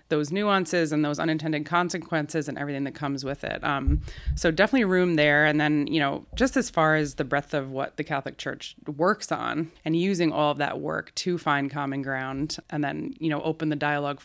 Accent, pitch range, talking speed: American, 145-165 Hz, 215 wpm